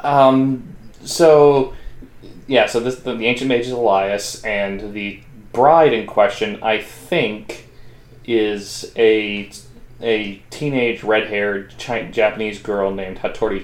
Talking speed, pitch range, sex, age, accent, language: 110 wpm, 105-130 Hz, male, 20-39, American, English